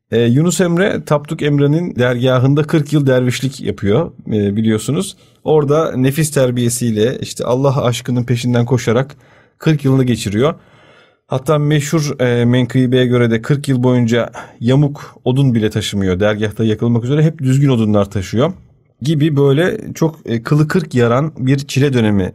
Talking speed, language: 140 wpm, Turkish